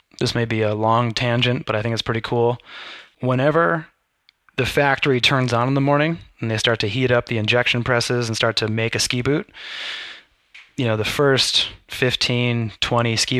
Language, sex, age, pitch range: English, male, 20-39, 110-125 Hz